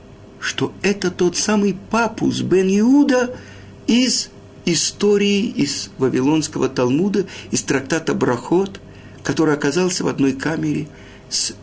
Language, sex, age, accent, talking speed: Russian, male, 50-69, native, 105 wpm